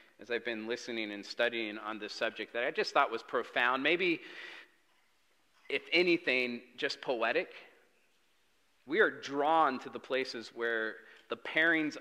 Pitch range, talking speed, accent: 125-170 Hz, 145 wpm, American